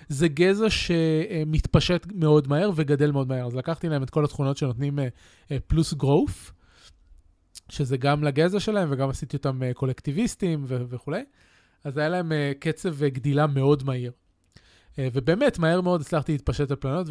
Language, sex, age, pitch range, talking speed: Hebrew, male, 20-39, 135-170 Hz, 160 wpm